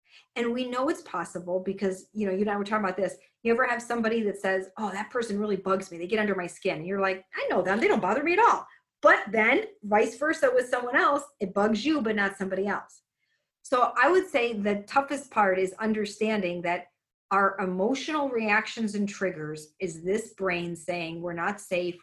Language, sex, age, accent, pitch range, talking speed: English, female, 40-59, American, 185-225 Hz, 220 wpm